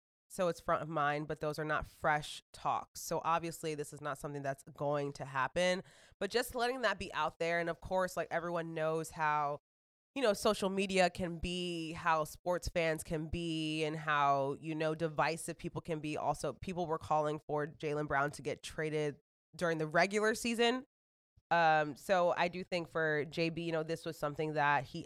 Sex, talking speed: female, 195 wpm